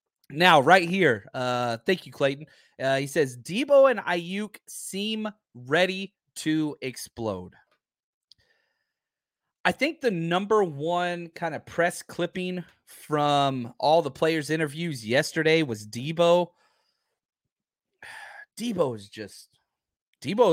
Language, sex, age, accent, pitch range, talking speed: English, male, 30-49, American, 140-195 Hz, 110 wpm